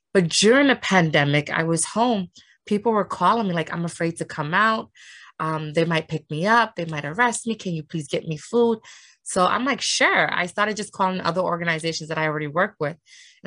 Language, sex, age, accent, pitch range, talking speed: English, female, 20-39, American, 155-185 Hz, 220 wpm